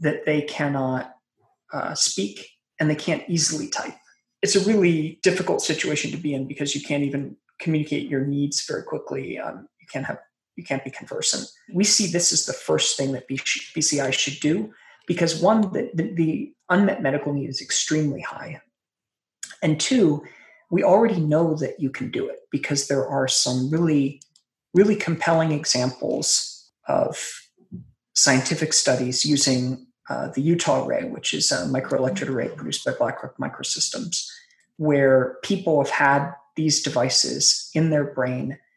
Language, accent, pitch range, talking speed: English, American, 135-165 Hz, 155 wpm